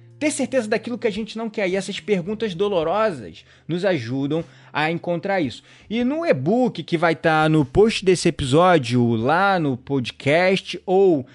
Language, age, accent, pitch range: Portuguese, 20-39, Brazilian, 150-195 Hz